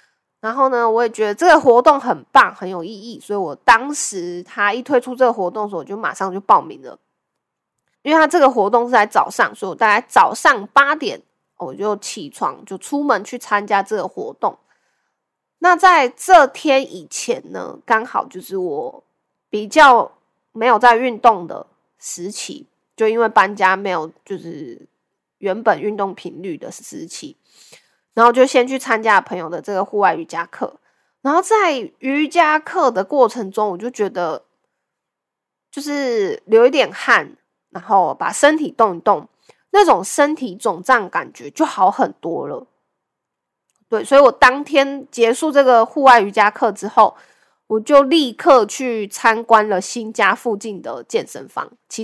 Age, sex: 20-39, female